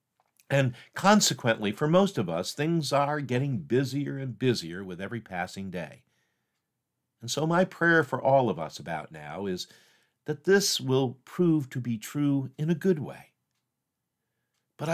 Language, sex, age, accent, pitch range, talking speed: English, male, 50-69, American, 115-160 Hz, 155 wpm